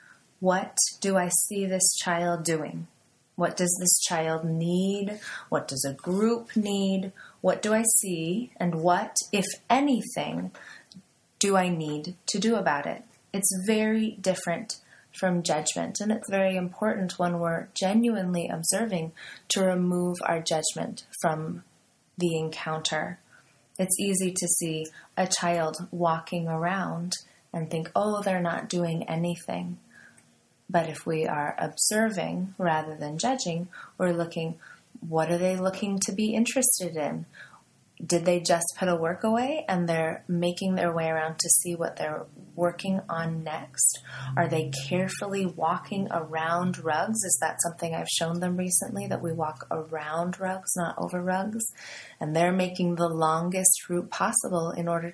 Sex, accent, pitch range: female, American, 165-190 Hz